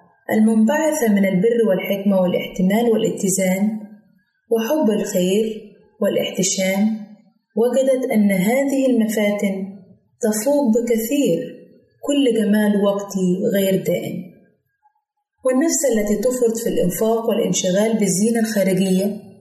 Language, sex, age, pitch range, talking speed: Arabic, female, 20-39, 190-235 Hz, 85 wpm